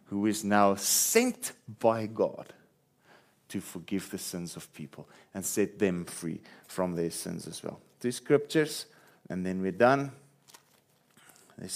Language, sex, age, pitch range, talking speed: English, male, 40-59, 100-130 Hz, 145 wpm